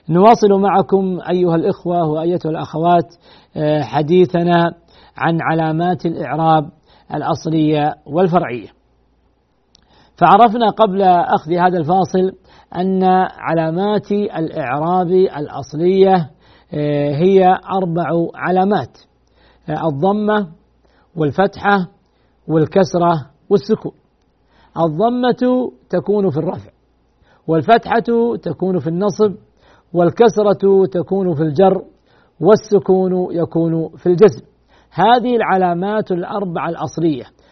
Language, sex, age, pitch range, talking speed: Arabic, male, 50-69, 165-210 Hz, 75 wpm